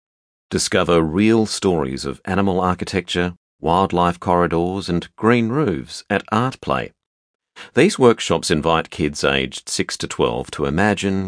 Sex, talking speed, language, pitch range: male, 130 wpm, English, 70-100 Hz